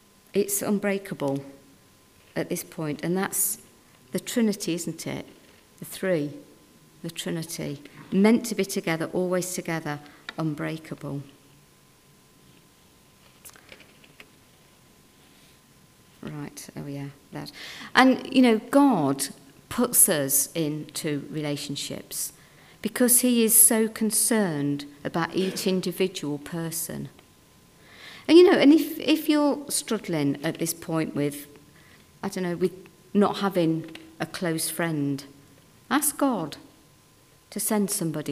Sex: female